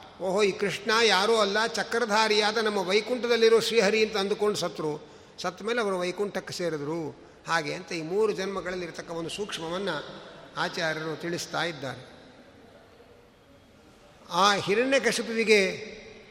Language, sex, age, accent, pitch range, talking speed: Kannada, male, 50-69, native, 170-220 Hz, 105 wpm